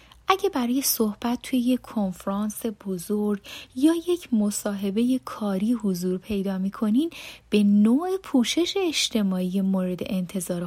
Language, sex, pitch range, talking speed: Persian, female, 195-260 Hz, 110 wpm